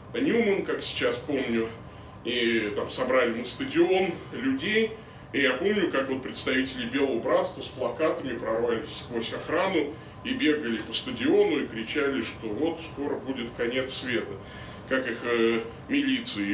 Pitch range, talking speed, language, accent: 110-140 Hz, 130 wpm, Russian, native